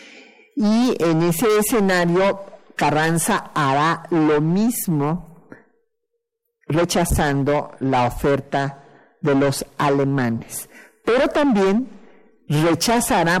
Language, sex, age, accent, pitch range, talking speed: Spanish, male, 50-69, Mexican, 140-185 Hz, 75 wpm